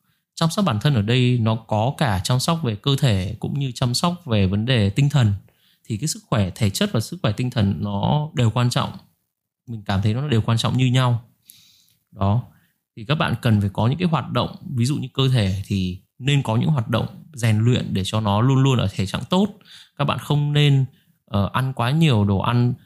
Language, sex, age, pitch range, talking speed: Vietnamese, male, 20-39, 110-145 Hz, 235 wpm